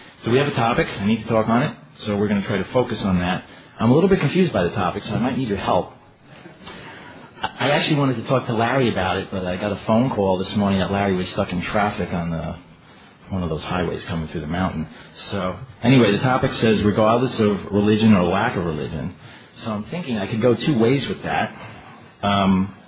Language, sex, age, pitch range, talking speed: English, male, 40-59, 95-125 Hz, 235 wpm